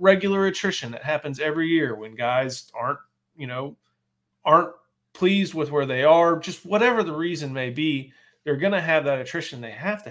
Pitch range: 130-170 Hz